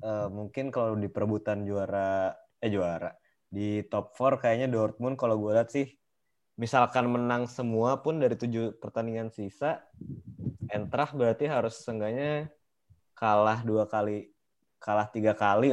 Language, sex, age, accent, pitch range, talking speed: Indonesian, male, 20-39, native, 105-125 Hz, 135 wpm